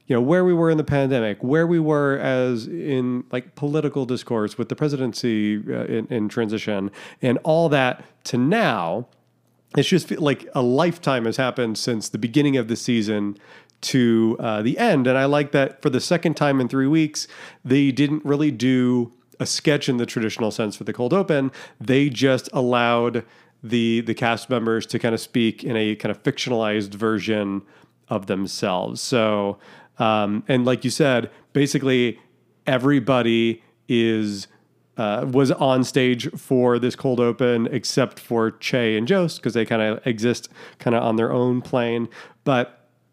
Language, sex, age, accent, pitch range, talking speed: English, male, 40-59, American, 115-145 Hz, 175 wpm